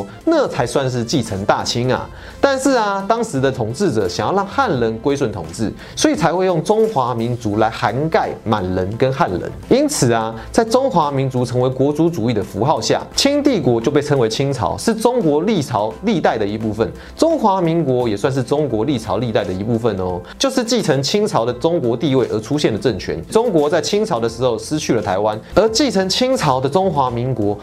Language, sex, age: Chinese, male, 30-49